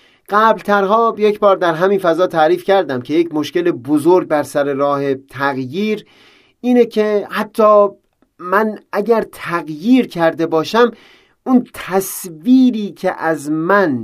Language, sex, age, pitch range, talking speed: Persian, male, 40-59, 135-195 Hz, 130 wpm